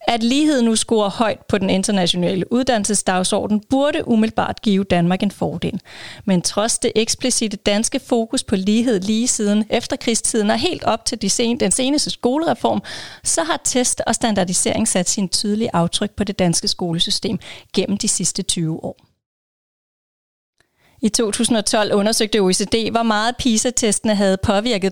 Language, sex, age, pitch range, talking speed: Danish, female, 30-49, 190-235 Hz, 155 wpm